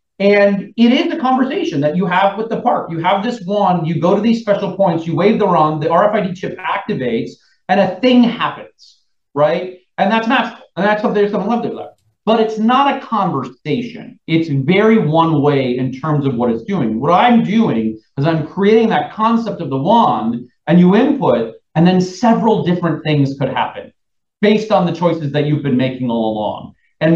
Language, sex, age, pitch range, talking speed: English, male, 40-59, 145-205 Hz, 200 wpm